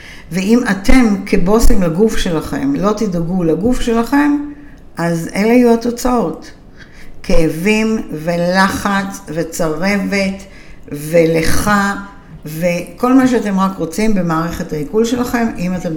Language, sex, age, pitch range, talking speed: Hebrew, female, 60-79, 165-235 Hz, 100 wpm